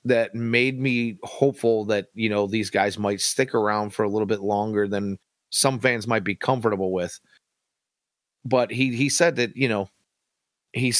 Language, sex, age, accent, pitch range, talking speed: English, male, 30-49, American, 100-120 Hz, 175 wpm